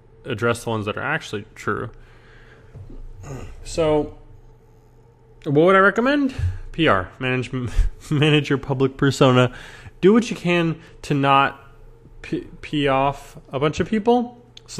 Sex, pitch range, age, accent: male, 115-140 Hz, 20-39, American